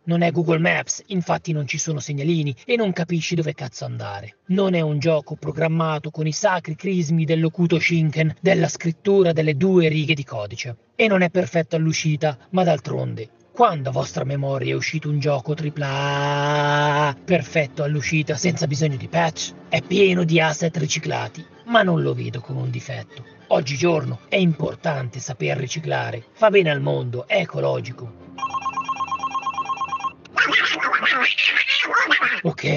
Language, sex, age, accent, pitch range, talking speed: Italian, male, 40-59, native, 140-175 Hz, 145 wpm